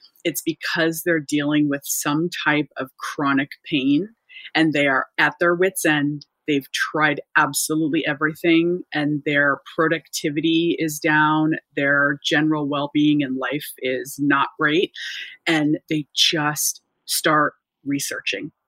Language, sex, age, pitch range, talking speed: English, female, 30-49, 145-165 Hz, 130 wpm